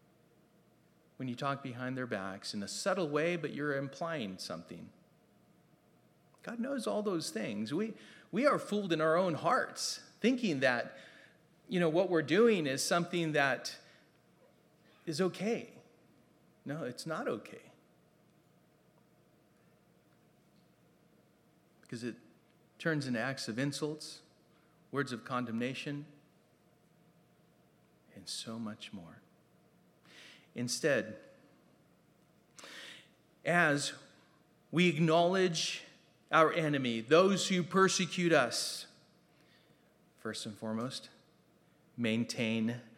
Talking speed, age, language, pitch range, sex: 100 wpm, 40-59, English, 140-190 Hz, male